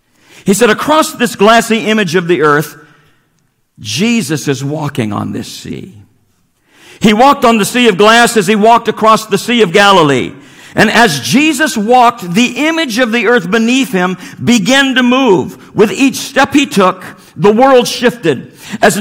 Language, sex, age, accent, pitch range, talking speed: English, male, 50-69, American, 180-240 Hz, 165 wpm